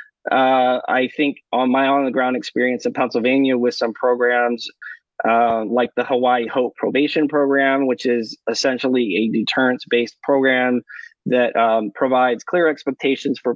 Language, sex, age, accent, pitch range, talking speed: English, male, 20-39, American, 120-135 Hz, 135 wpm